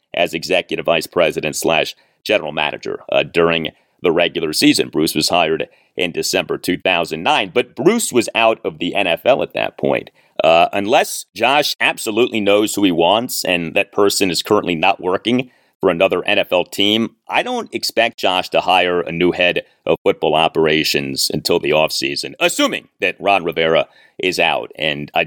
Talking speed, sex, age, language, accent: 165 wpm, male, 40-59, English, American